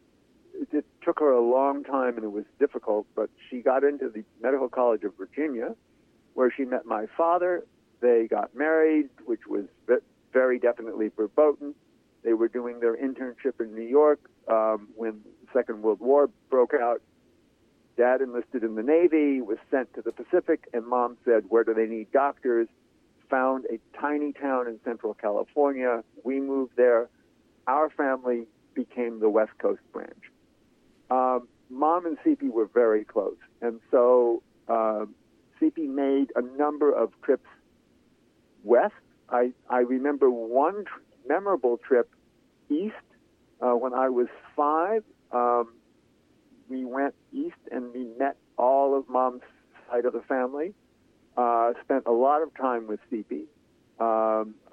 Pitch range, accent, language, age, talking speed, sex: 115-145 Hz, American, English, 60-79, 150 wpm, male